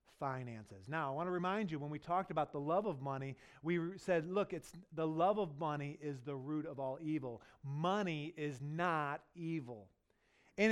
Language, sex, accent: English, male, American